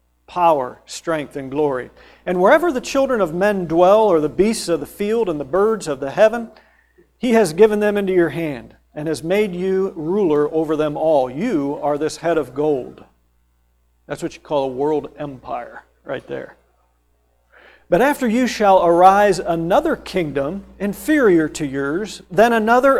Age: 50-69